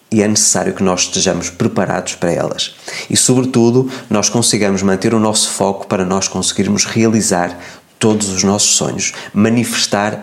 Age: 20-39